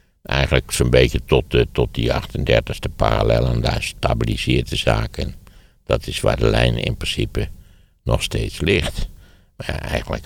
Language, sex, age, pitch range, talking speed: Dutch, male, 60-79, 65-90 Hz, 170 wpm